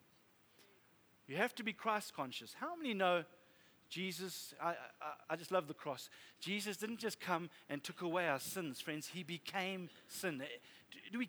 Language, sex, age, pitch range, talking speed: English, male, 40-59, 200-265 Hz, 170 wpm